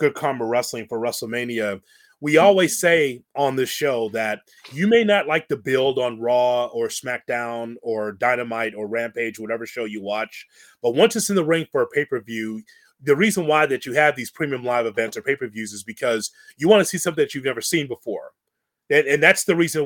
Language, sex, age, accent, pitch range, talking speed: English, male, 30-49, American, 125-190 Hz, 205 wpm